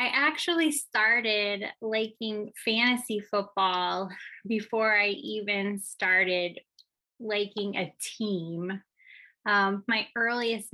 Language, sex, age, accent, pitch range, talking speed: English, female, 20-39, American, 200-235 Hz, 90 wpm